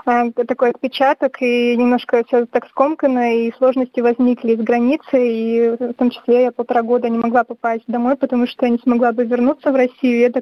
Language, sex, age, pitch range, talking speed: Russian, female, 20-39, 235-255 Hz, 195 wpm